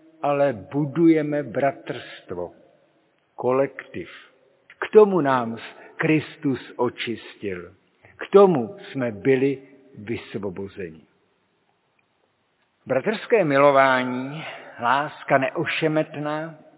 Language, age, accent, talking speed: Czech, 50-69, native, 65 wpm